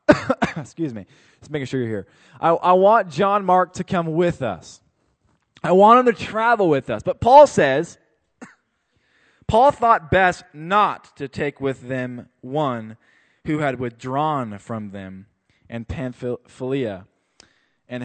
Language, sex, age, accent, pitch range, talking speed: English, male, 20-39, American, 135-210 Hz, 145 wpm